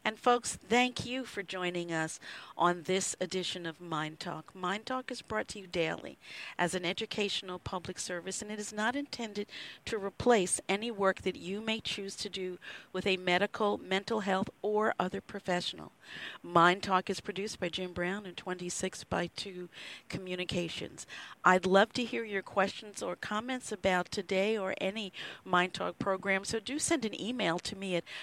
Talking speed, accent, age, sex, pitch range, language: 175 wpm, American, 50-69, female, 165-205 Hz, English